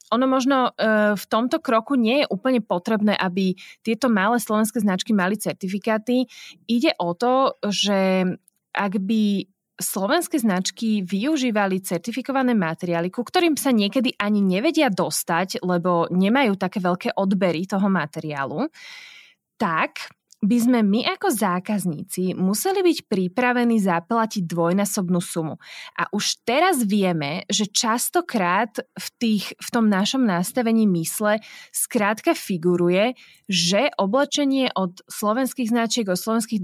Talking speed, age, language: 125 wpm, 20-39, Slovak